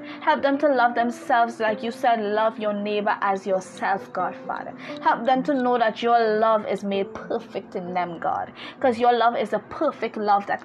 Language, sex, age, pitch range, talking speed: English, female, 20-39, 200-250 Hz, 205 wpm